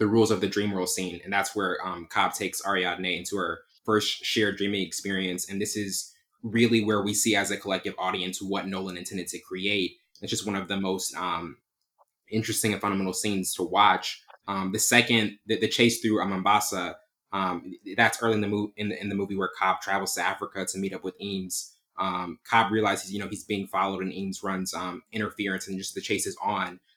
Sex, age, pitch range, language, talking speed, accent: male, 20-39, 95-110 Hz, English, 215 wpm, American